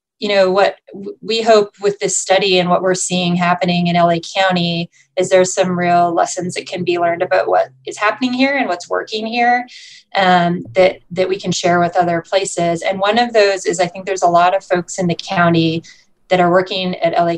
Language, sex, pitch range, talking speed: English, female, 175-195 Hz, 220 wpm